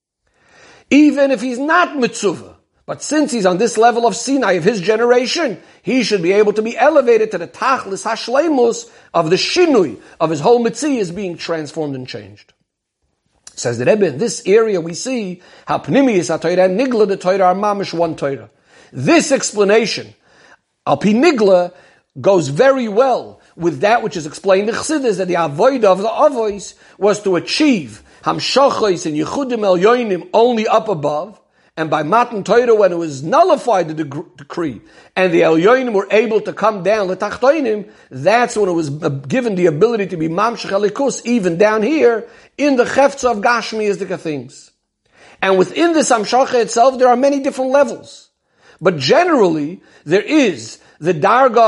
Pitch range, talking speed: 175-245 Hz, 160 wpm